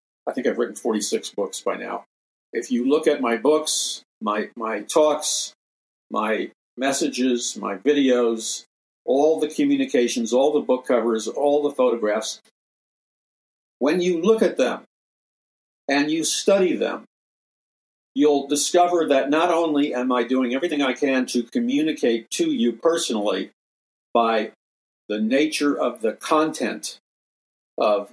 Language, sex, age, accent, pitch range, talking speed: English, male, 50-69, American, 120-155 Hz, 135 wpm